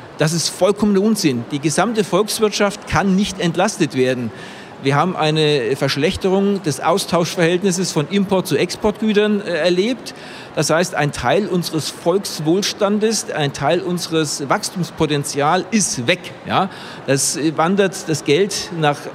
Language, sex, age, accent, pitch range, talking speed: German, male, 50-69, German, 155-205 Hz, 120 wpm